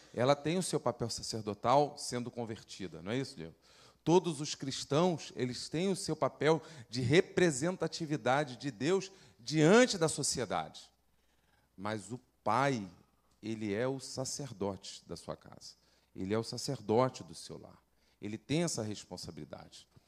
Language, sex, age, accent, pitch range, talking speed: Portuguese, male, 40-59, Brazilian, 110-155 Hz, 145 wpm